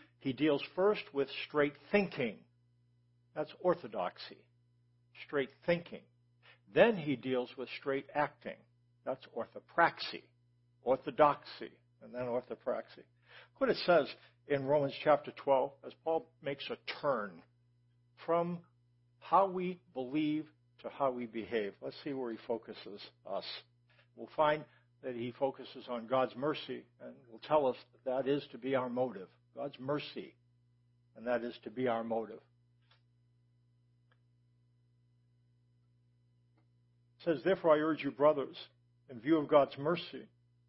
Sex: male